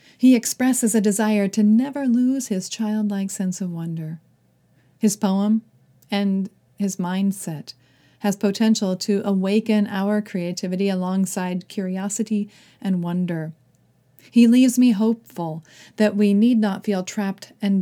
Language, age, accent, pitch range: English, 40-59, American, 185-220 Hz